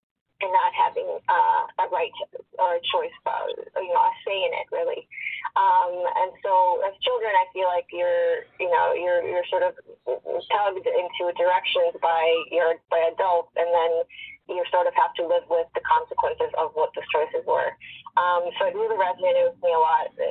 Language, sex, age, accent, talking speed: English, female, 20-39, American, 195 wpm